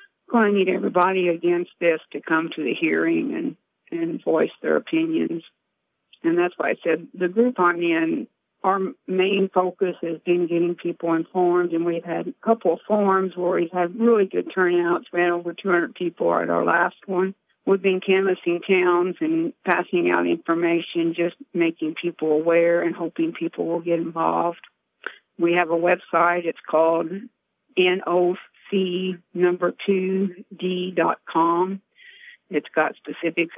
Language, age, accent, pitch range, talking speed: English, 50-69, American, 165-190 Hz, 155 wpm